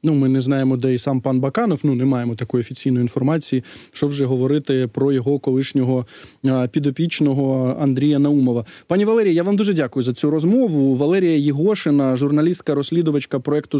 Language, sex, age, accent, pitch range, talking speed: Ukrainian, male, 20-39, native, 150-180 Hz, 160 wpm